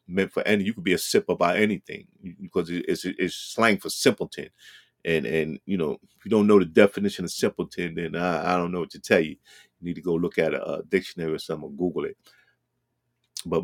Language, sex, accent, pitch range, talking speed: English, male, American, 100-135 Hz, 225 wpm